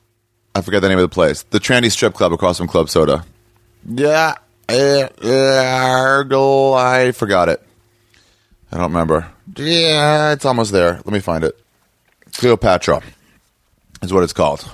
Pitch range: 90-115 Hz